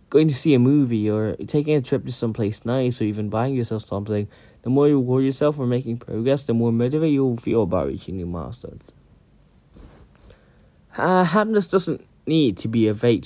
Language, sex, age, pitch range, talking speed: English, male, 10-29, 110-150 Hz, 195 wpm